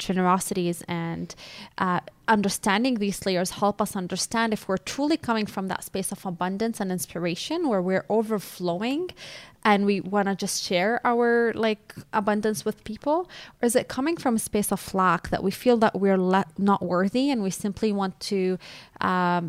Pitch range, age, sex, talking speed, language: 180-220 Hz, 20-39, female, 175 wpm, English